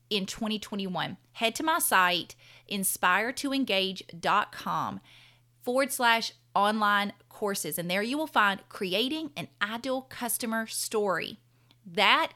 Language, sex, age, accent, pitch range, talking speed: English, female, 30-49, American, 180-245 Hz, 105 wpm